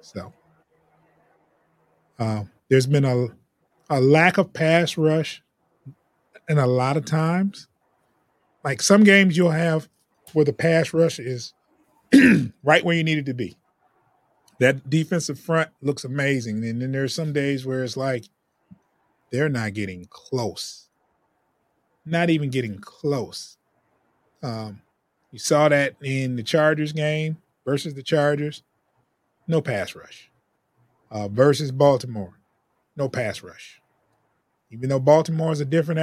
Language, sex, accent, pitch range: English, male, American, 125-155 Hz